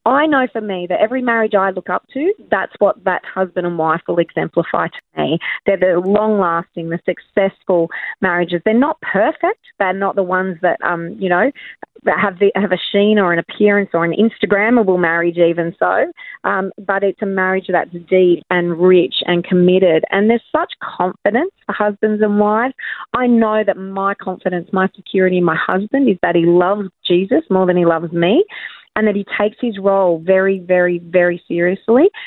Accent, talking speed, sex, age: Australian, 190 wpm, female, 30-49